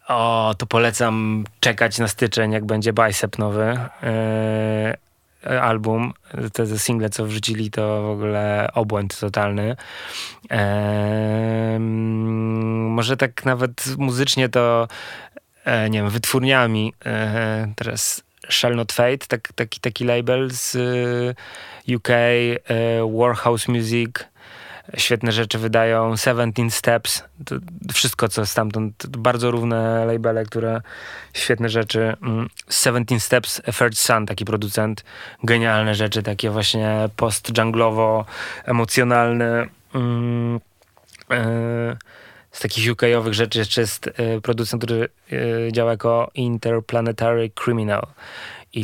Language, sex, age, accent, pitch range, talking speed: Polish, male, 20-39, native, 110-120 Hz, 100 wpm